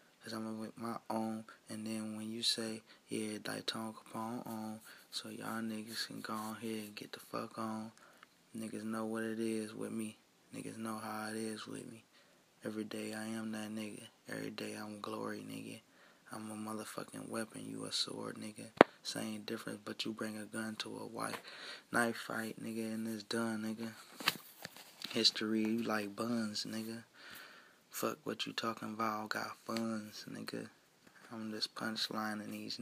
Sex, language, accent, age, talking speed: male, English, American, 20-39, 170 wpm